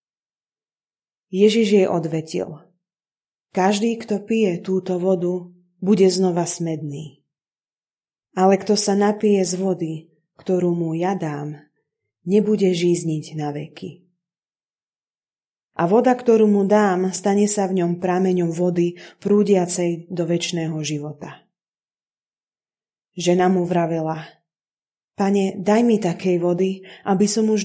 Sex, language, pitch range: female, Slovak, 170-195 Hz